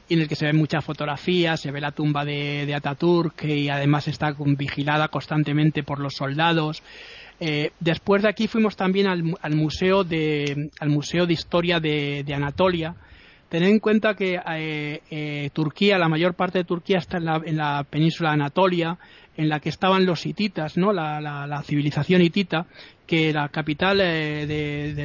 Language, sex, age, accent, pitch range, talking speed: Spanish, male, 30-49, Spanish, 150-175 Hz, 185 wpm